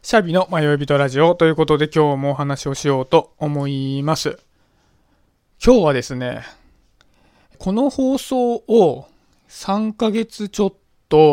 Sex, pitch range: male, 140-195 Hz